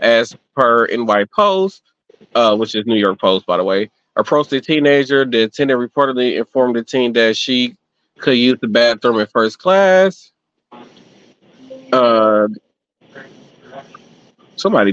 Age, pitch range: 30-49, 115-145 Hz